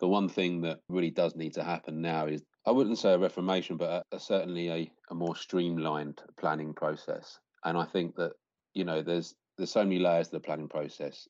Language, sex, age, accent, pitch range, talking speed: English, male, 40-59, British, 80-90 Hz, 220 wpm